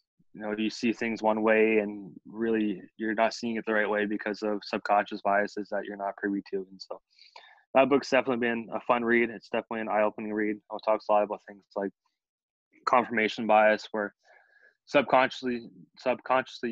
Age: 20-39